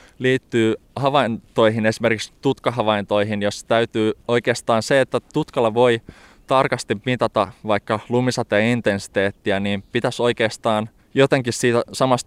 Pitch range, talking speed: 100-115 Hz, 110 wpm